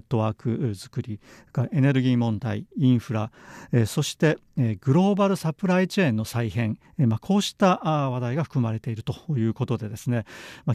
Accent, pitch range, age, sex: native, 115-165 Hz, 40-59, male